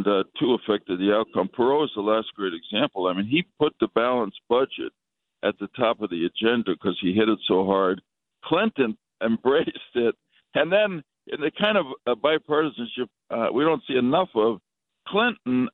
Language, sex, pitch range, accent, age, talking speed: English, male, 100-135 Hz, American, 60-79, 185 wpm